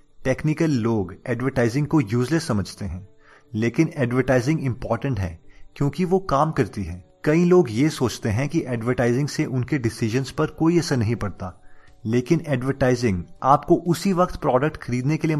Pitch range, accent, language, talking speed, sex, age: 105-150 Hz, native, Marathi, 95 wpm, male, 30-49